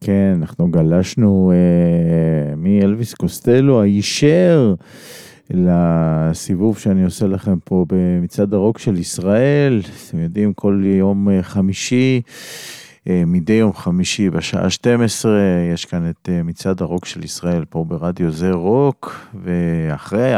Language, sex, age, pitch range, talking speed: Hebrew, male, 40-59, 85-110 Hz, 110 wpm